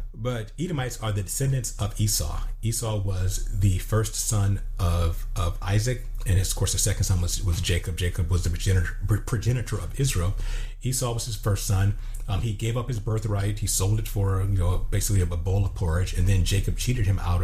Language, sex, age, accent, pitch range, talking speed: English, male, 40-59, American, 95-115 Hz, 205 wpm